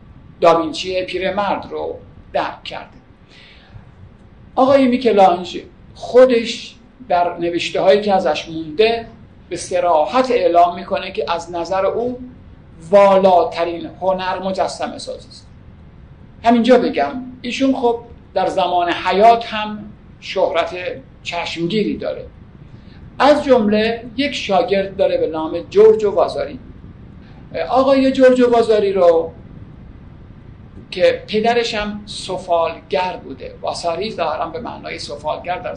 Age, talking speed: 50-69, 105 wpm